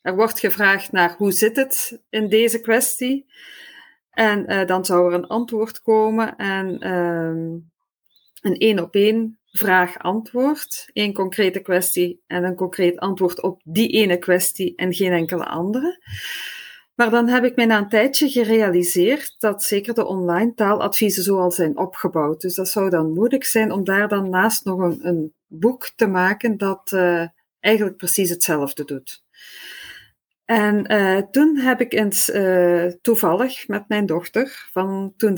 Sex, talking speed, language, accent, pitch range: female, 155 wpm, Dutch, Dutch, 185-245 Hz